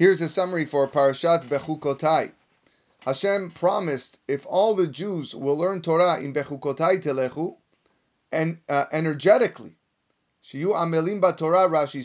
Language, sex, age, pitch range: English, male, 30-49, 140-180 Hz